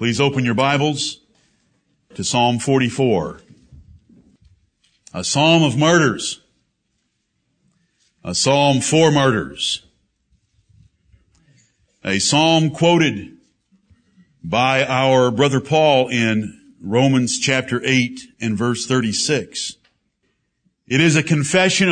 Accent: American